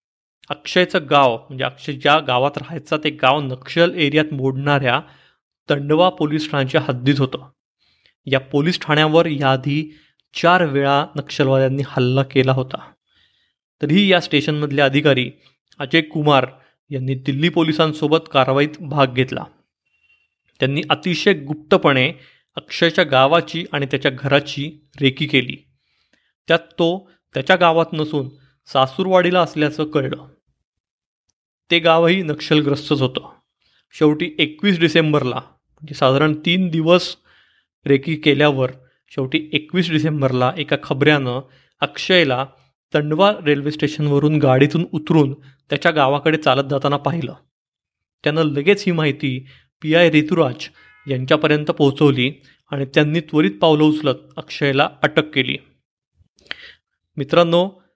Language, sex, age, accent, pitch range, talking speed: Marathi, male, 30-49, native, 140-165 Hz, 105 wpm